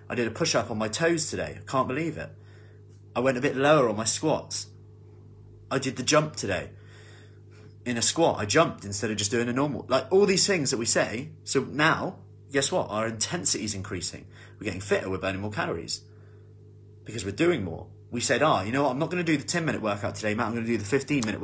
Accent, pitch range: British, 105-125 Hz